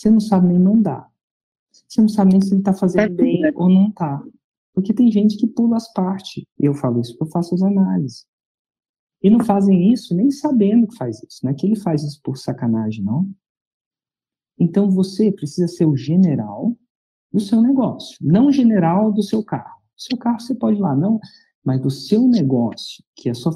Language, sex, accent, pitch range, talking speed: Portuguese, male, Brazilian, 140-205 Hz, 205 wpm